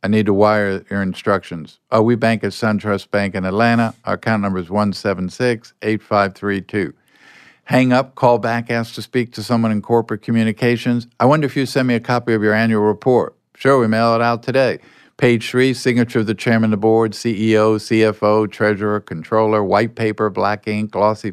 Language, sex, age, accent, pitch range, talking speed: English, male, 50-69, American, 105-125 Hz, 190 wpm